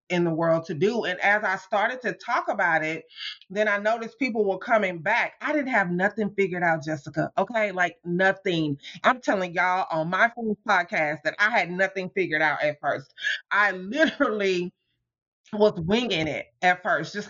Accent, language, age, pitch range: American, English, 30-49, 175-220 Hz